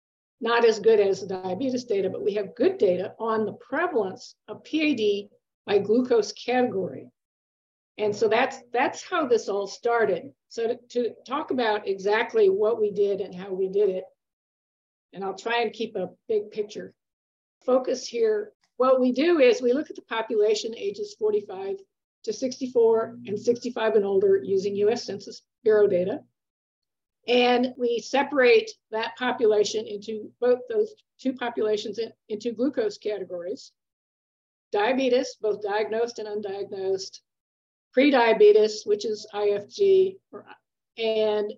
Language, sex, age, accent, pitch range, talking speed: English, female, 50-69, American, 210-295 Hz, 140 wpm